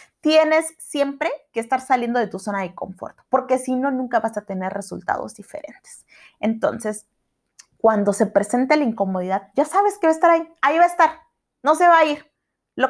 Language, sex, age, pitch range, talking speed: Spanish, female, 30-49, 190-280 Hz, 195 wpm